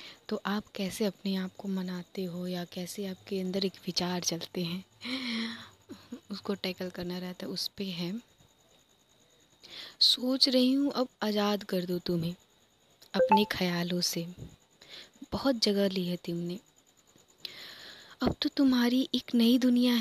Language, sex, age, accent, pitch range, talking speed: Hindi, female, 20-39, native, 180-230 Hz, 145 wpm